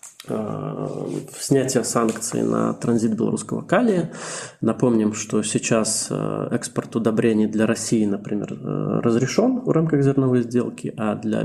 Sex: male